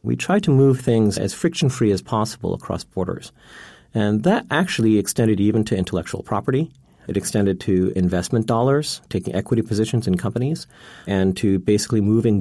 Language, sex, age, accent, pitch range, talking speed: English, male, 40-59, American, 95-120 Hz, 160 wpm